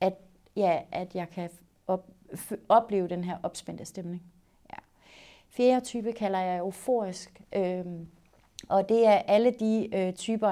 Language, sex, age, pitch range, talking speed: Danish, female, 30-49, 185-210 Hz, 115 wpm